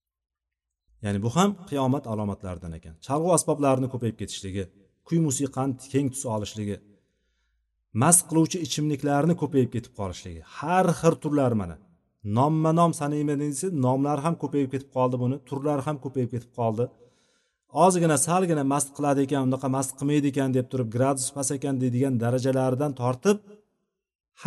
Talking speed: 130 wpm